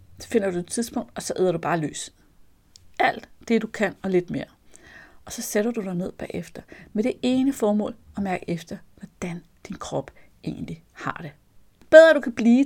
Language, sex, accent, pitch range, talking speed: Danish, female, native, 170-235 Hz, 205 wpm